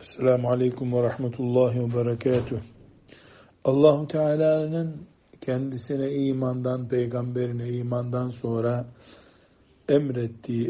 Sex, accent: male, native